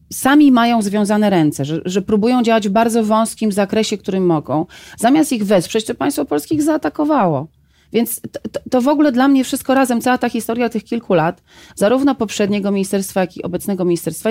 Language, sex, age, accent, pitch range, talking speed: Polish, female, 30-49, native, 175-230 Hz, 190 wpm